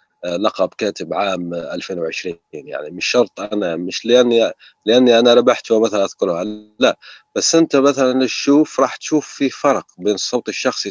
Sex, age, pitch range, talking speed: male, 30-49, 110-150 Hz, 150 wpm